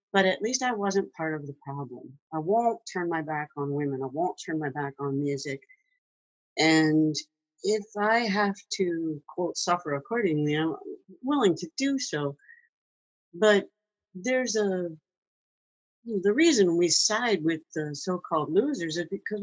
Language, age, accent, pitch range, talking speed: English, 60-79, American, 150-205 Hz, 150 wpm